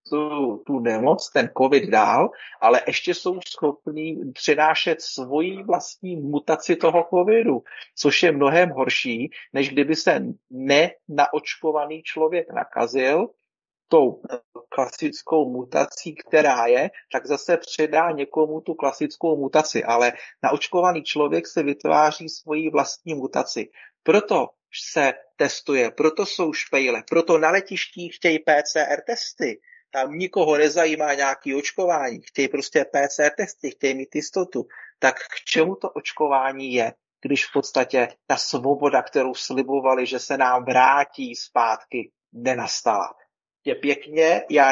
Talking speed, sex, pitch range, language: 125 wpm, male, 140-165 Hz, Czech